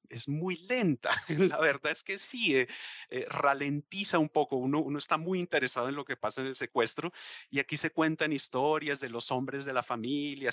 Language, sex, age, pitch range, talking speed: Spanish, male, 30-49, 125-165 Hz, 205 wpm